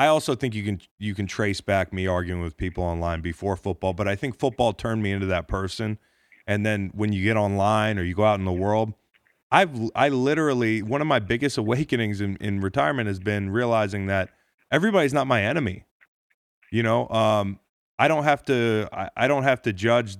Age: 30-49